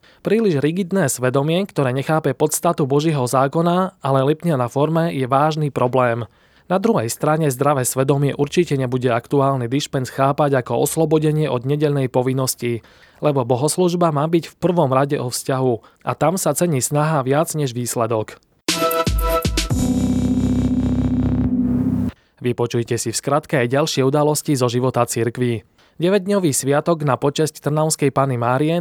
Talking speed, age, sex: 135 wpm, 20-39, male